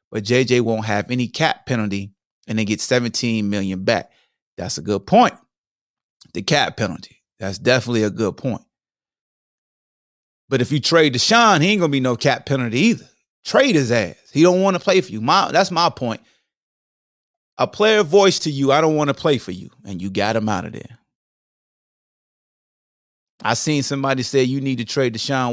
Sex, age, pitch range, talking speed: male, 30-49, 110-180 Hz, 185 wpm